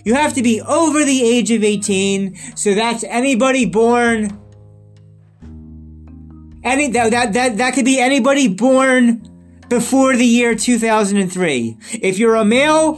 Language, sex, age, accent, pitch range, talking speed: English, male, 30-49, American, 185-255 Hz, 150 wpm